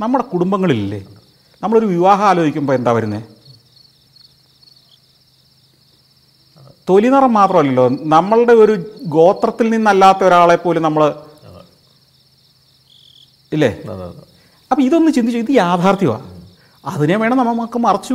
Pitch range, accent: 140-225 Hz, native